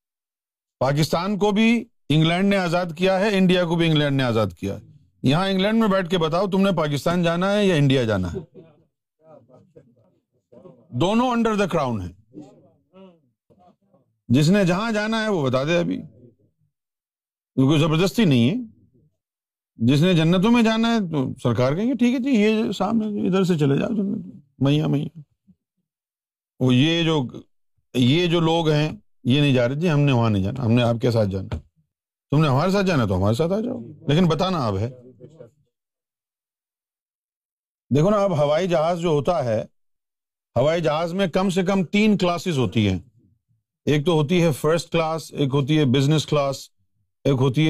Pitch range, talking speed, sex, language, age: 125-185 Hz, 140 wpm, male, Urdu, 50-69